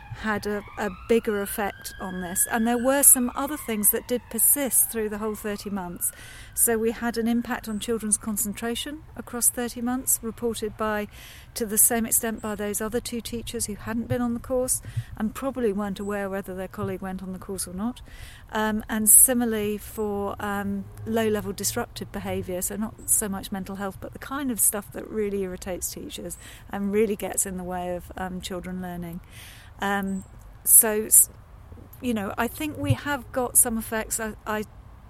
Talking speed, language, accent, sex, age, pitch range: 185 wpm, English, British, female, 40-59, 195-230 Hz